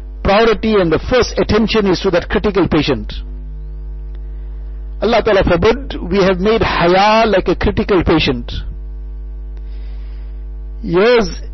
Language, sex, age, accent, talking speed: English, male, 60-79, Indian, 110 wpm